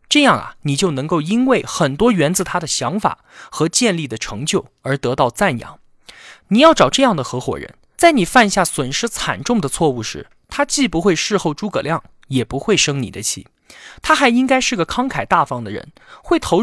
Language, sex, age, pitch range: Chinese, male, 20-39, 135-225 Hz